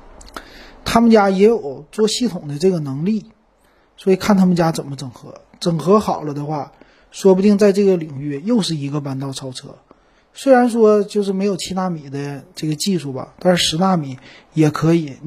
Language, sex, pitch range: Chinese, male, 145-190 Hz